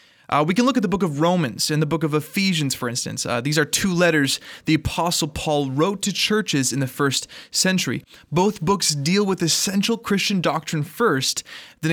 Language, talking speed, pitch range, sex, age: English, 200 wpm, 135-185 Hz, male, 20-39